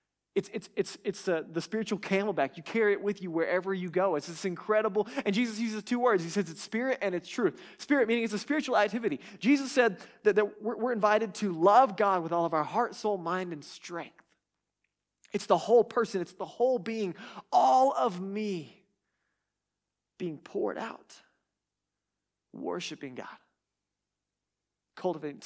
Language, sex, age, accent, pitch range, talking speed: English, male, 20-39, American, 150-205 Hz, 165 wpm